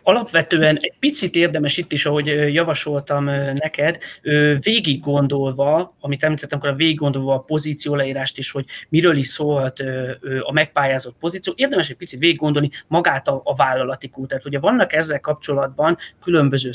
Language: Hungarian